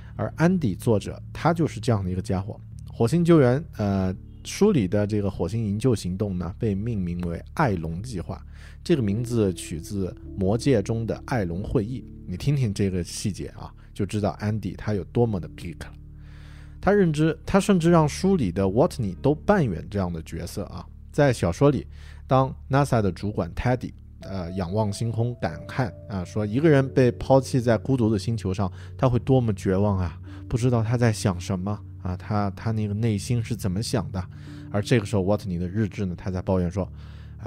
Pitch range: 90-120 Hz